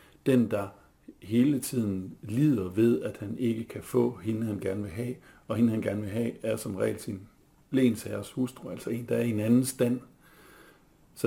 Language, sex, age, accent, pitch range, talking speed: Danish, male, 60-79, native, 100-125 Hz, 195 wpm